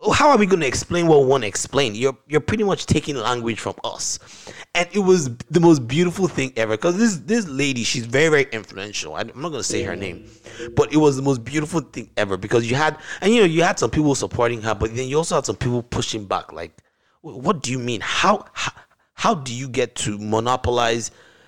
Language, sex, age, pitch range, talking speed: English, male, 30-49, 105-135 Hz, 230 wpm